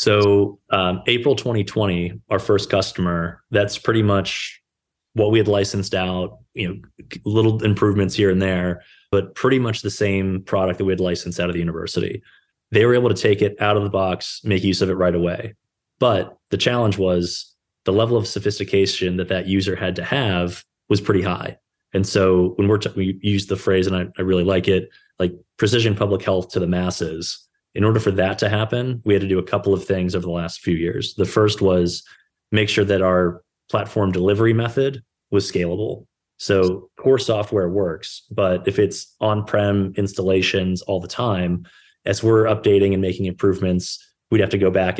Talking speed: 195 wpm